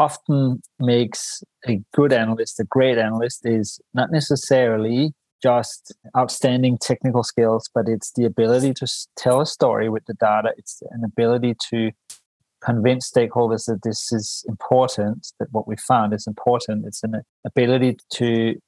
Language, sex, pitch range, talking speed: English, male, 110-125 Hz, 150 wpm